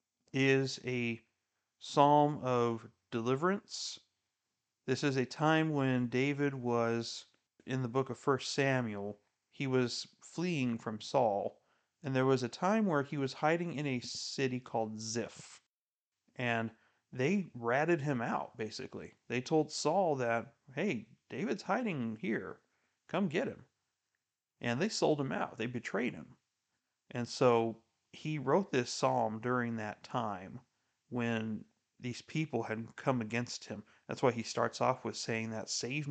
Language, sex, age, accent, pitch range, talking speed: English, male, 40-59, American, 115-140 Hz, 145 wpm